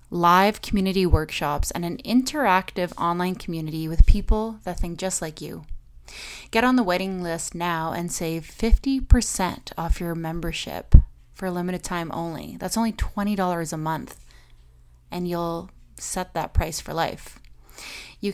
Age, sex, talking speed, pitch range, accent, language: 20-39, female, 145 wpm, 165-195 Hz, American, English